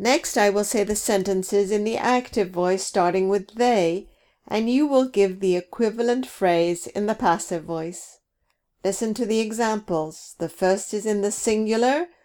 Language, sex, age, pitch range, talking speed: English, female, 50-69, 175-225 Hz, 165 wpm